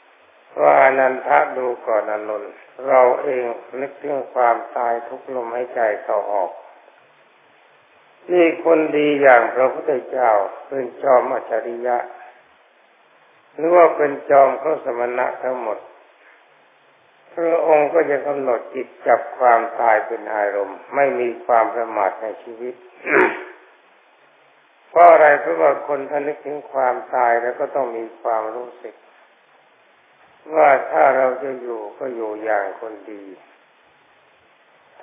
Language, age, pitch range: Thai, 60-79, 120-145 Hz